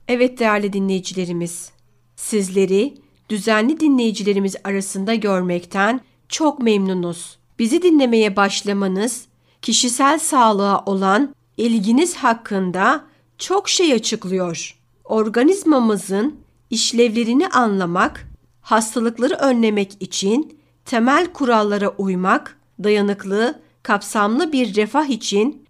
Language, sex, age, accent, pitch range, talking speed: Turkish, female, 60-79, native, 195-250 Hz, 80 wpm